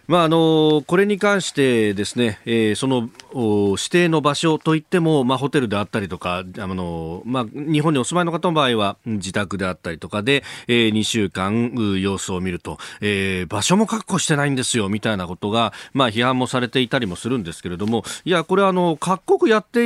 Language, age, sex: Japanese, 40-59, male